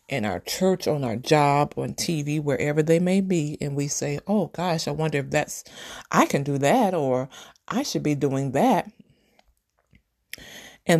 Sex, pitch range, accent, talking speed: female, 140-185 Hz, American, 175 wpm